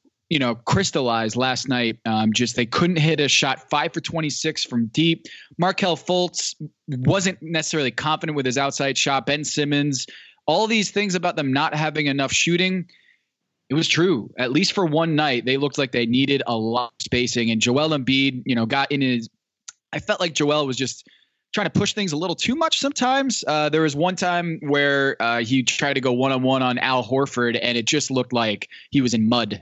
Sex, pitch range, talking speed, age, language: male, 125-165 Hz, 205 wpm, 20-39, English